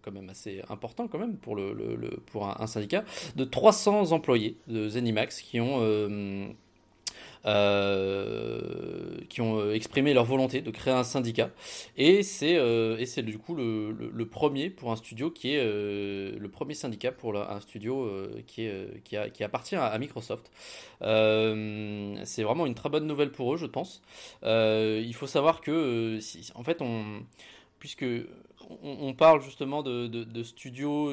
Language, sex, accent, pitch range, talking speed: French, male, French, 110-145 Hz, 175 wpm